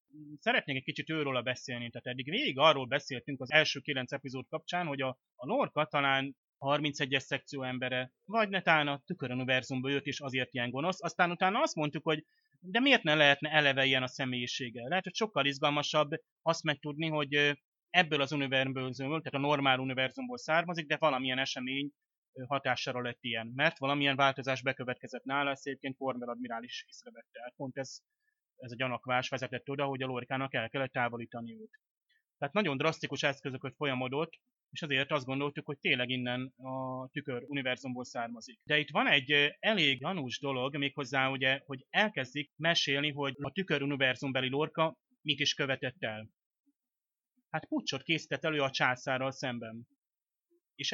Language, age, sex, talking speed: Hungarian, 30-49, male, 155 wpm